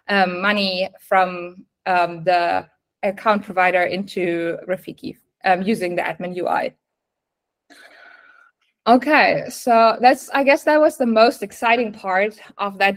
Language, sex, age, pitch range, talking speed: English, female, 20-39, 195-235 Hz, 125 wpm